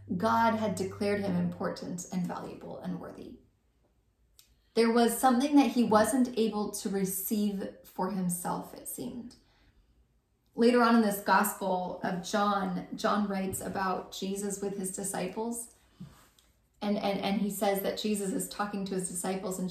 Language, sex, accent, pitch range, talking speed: English, female, American, 190-230 Hz, 150 wpm